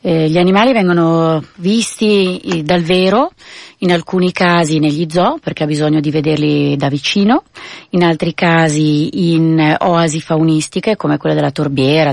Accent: native